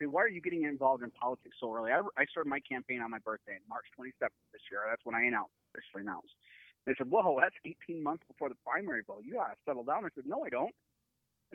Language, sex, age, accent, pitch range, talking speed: English, male, 30-49, American, 155-205 Hz, 255 wpm